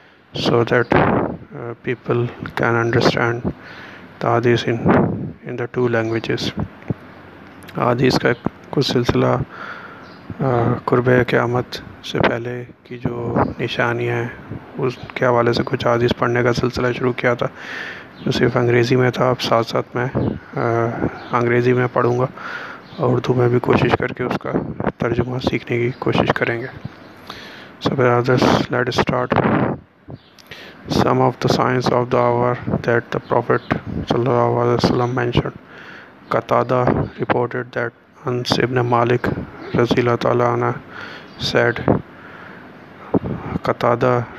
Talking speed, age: 105 wpm, 20-39